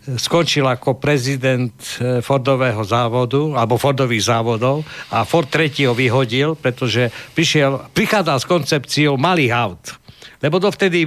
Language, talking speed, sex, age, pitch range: Slovak, 125 wpm, male, 60-79, 130-165 Hz